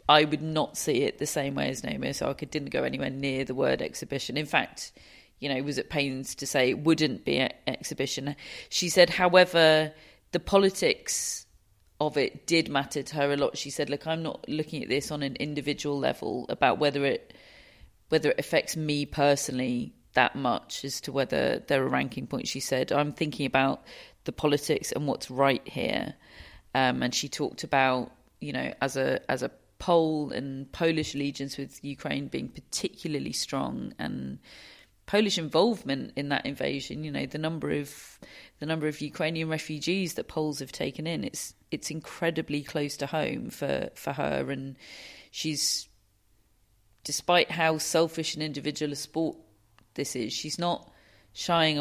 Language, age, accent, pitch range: English, 40-59, British, 135-160 Hz